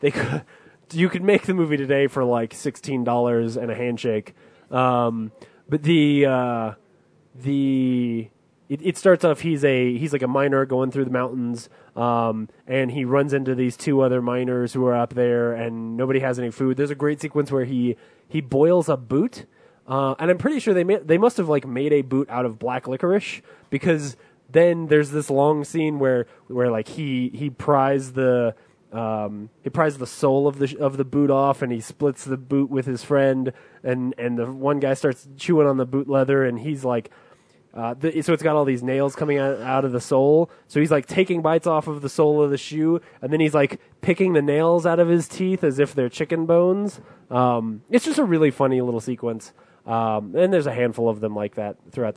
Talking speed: 215 wpm